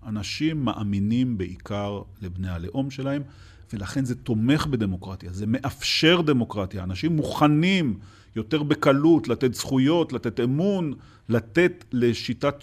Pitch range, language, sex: 100-135 Hz, Hebrew, male